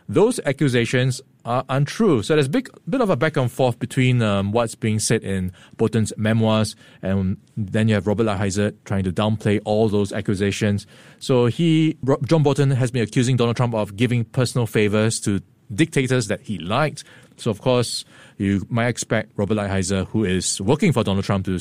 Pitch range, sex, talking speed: 105-135 Hz, male, 185 wpm